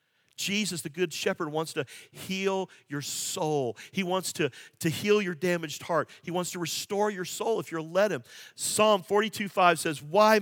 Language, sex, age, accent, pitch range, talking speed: English, male, 50-69, American, 170-215 Hz, 185 wpm